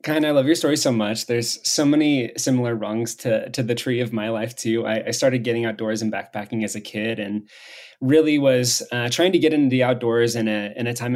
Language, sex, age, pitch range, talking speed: English, male, 20-39, 110-125 Hz, 240 wpm